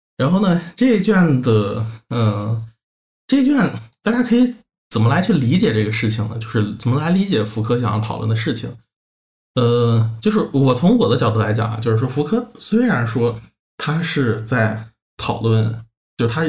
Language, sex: Chinese, male